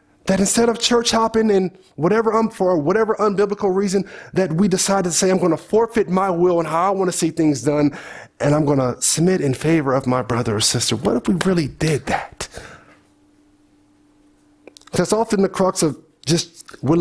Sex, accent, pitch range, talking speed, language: male, American, 130-185 Hz, 200 wpm, English